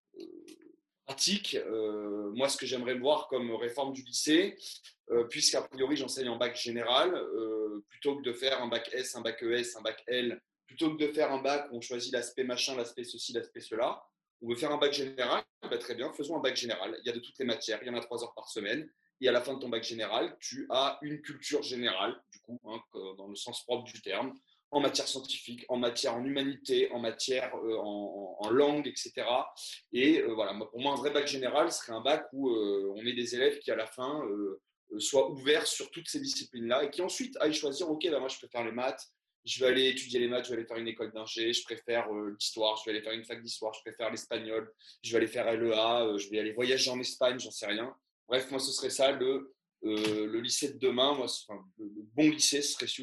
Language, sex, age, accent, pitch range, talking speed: French, male, 30-49, French, 115-145 Hz, 245 wpm